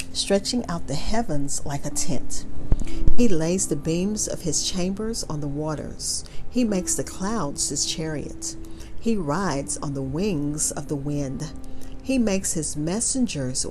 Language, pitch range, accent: English, 140-195 Hz, American